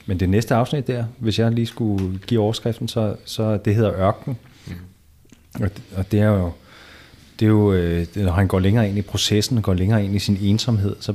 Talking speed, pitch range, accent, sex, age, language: 215 wpm, 95-110 Hz, native, male, 30-49, Danish